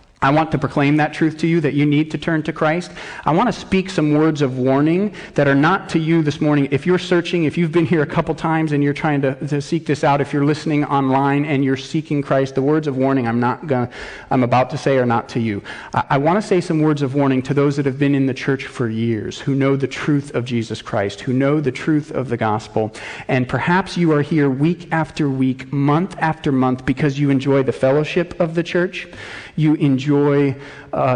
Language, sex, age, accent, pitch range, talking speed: English, male, 40-59, American, 135-155 Hz, 245 wpm